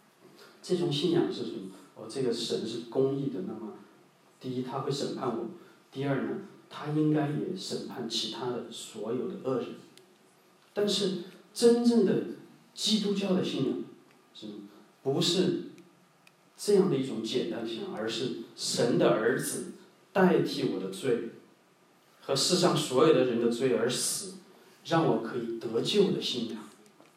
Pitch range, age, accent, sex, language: 135-185 Hz, 40-59, Chinese, male, English